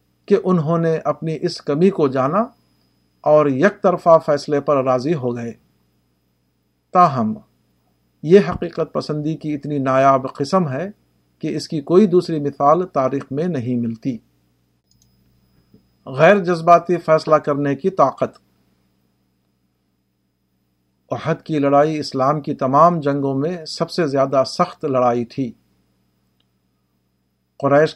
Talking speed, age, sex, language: 120 wpm, 50-69, male, Urdu